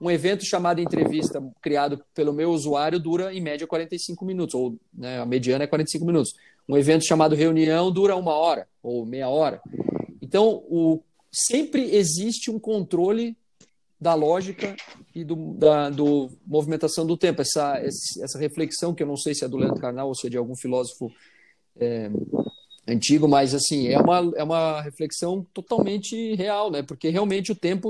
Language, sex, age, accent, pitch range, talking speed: Portuguese, male, 40-59, Brazilian, 140-175 Hz, 170 wpm